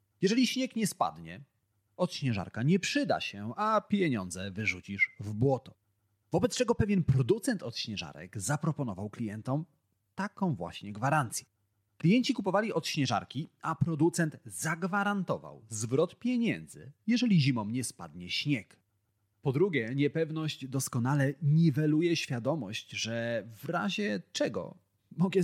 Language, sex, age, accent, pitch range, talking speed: Polish, male, 30-49, native, 110-170 Hz, 110 wpm